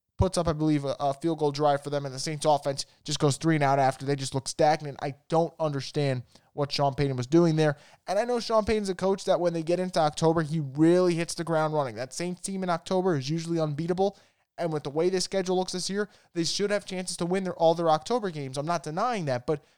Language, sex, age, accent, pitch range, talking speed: English, male, 20-39, American, 145-180 Hz, 260 wpm